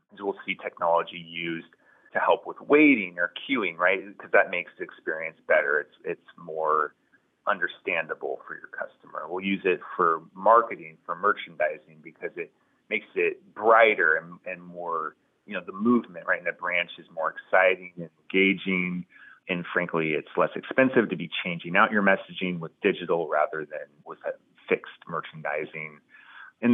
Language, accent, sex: English, American, male